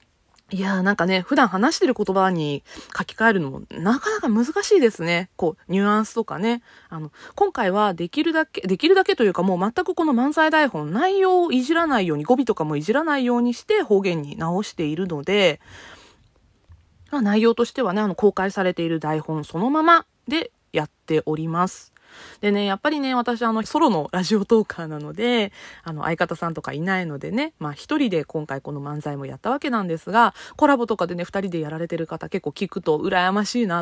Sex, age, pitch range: female, 20-39, 175-260 Hz